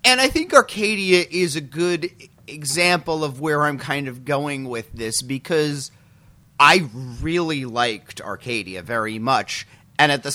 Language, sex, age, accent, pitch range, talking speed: English, male, 30-49, American, 120-155 Hz, 150 wpm